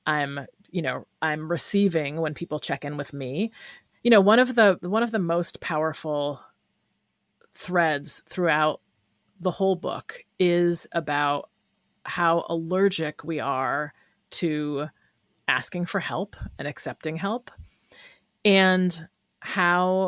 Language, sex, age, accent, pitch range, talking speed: English, female, 30-49, American, 150-185 Hz, 125 wpm